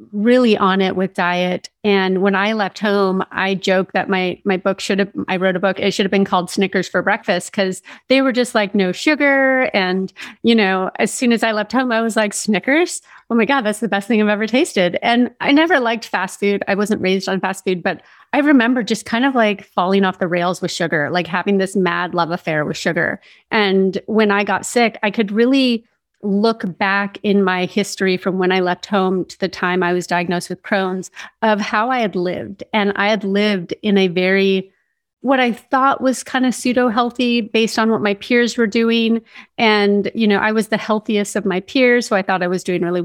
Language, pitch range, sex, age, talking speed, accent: English, 190-225 Hz, female, 30-49, 225 wpm, American